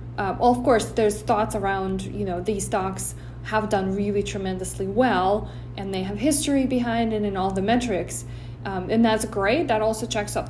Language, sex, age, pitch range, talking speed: English, female, 20-39, 180-240 Hz, 195 wpm